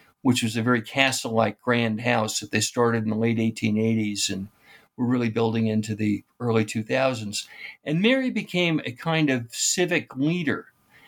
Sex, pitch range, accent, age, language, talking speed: male, 110-135 Hz, American, 60-79, English, 160 wpm